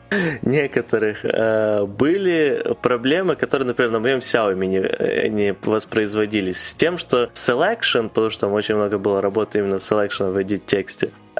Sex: male